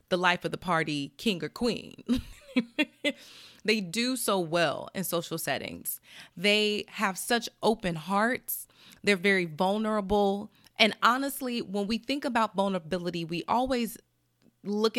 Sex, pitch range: female, 170-235 Hz